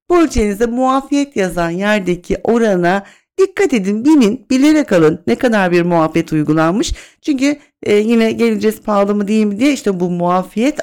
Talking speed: 145 wpm